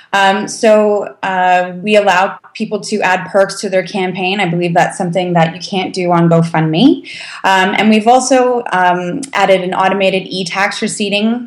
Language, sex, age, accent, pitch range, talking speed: English, female, 20-39, American, 175-210 Hz, 175 wpm